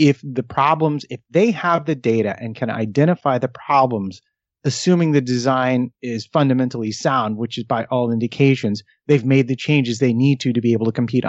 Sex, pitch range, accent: male, 115-145 Hz, American